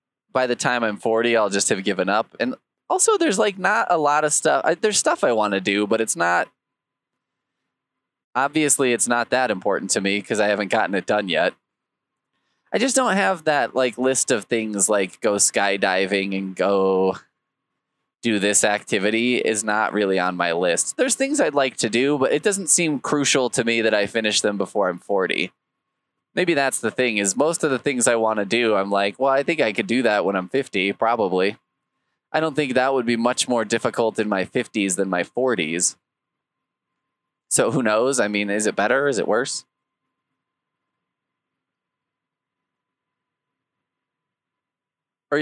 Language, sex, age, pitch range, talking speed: English, male, 20-39, 100-140 Hz, 180 wpm